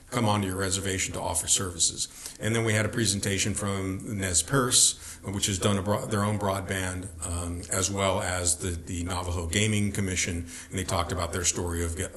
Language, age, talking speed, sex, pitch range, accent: English, 50-69, 200 wpm, male, 90-105 Hz, American